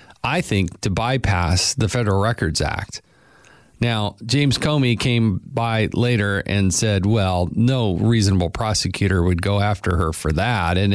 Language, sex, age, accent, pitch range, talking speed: English, male, 40-59, American, 100-130 Hz, 150 wpm